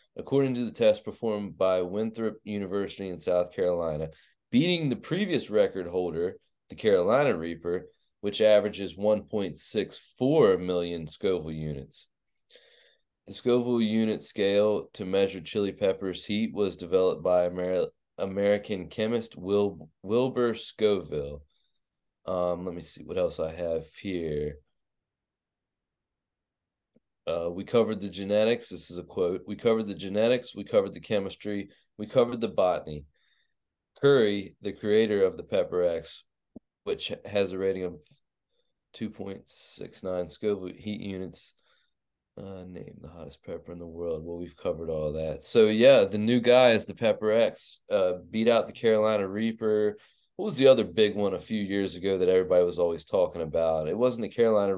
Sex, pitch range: male, 90-110 Hz